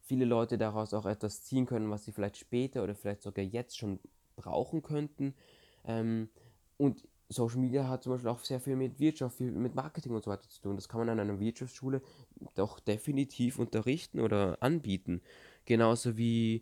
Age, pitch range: 20-39, 100-125 Hz